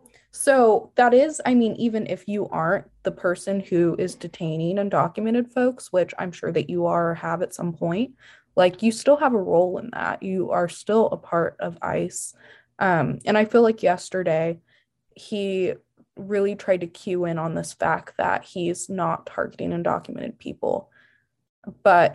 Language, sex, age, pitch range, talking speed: English, female, 20-39, 170-215 Hz, 175 wpm